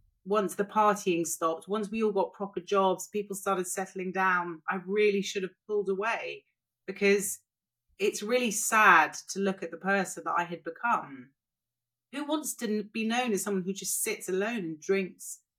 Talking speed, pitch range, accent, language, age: 175 wpm, 180-240 Hz, British, English, 30-49